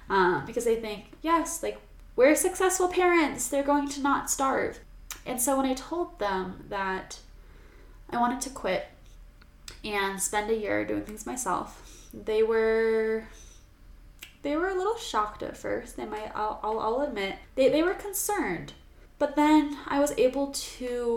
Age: 10-29